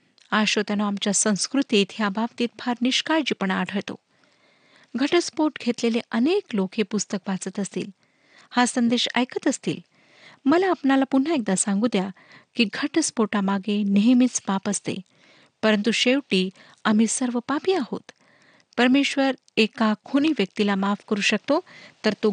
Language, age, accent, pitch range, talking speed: Marathi, 50-69, native, 200-250 Hz, 60 wpm